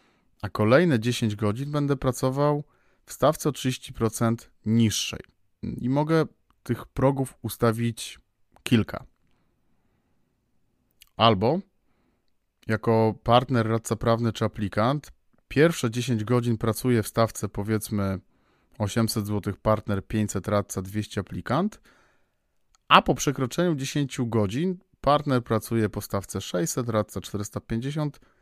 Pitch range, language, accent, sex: 105-130 Hz, Polish, native, male